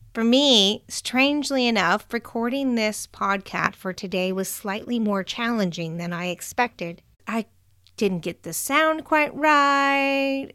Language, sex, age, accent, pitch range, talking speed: English, female, 30-49, American, 170-245 Hz, 130 wpm